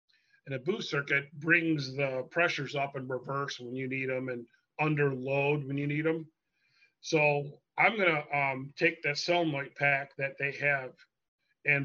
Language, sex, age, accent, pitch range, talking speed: English, male, 40-59, American, 140-165 Hz, 170 wpm